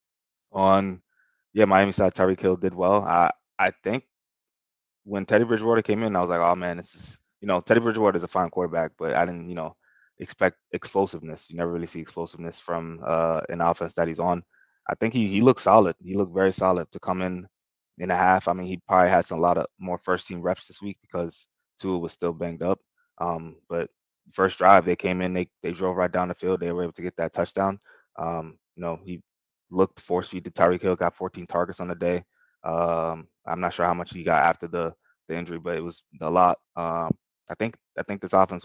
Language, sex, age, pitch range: English, male, 20-39, 85-95 Hz